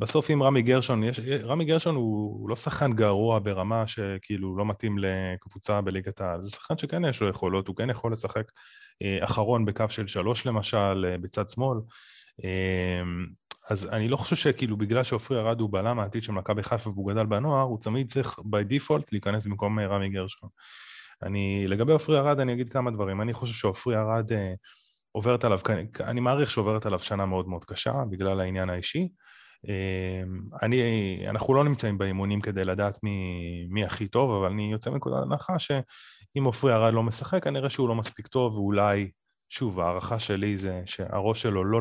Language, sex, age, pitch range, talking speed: Hebrew, male, 20-39, 95-120 Hz, 165 wpm